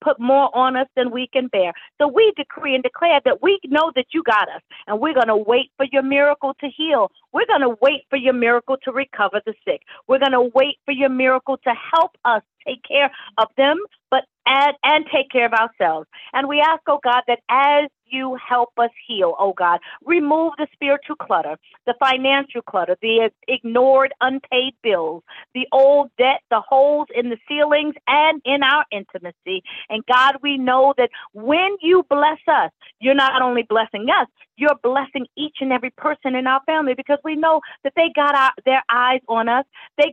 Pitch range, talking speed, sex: 245-295 Hz, 195 wpm, female